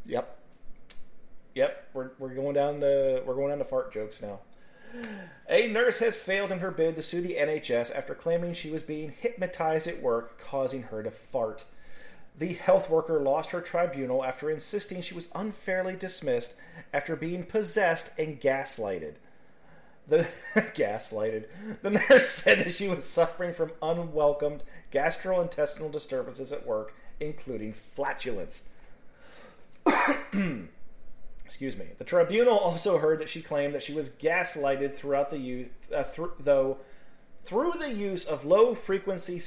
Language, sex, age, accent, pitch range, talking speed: English, male, 30-49, American, 140-185 Hz, 145 wpm